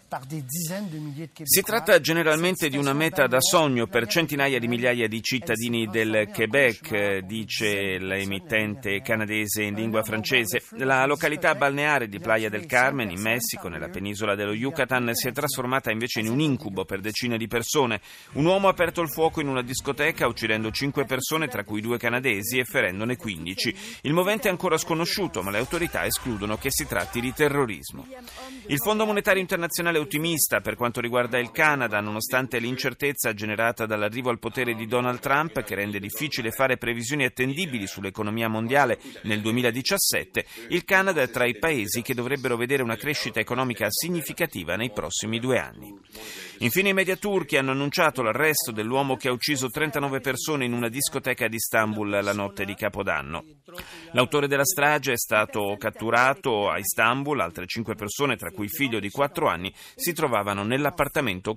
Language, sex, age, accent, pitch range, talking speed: Italian, male, 40-59, native, 110-150 Hz, 165 wpm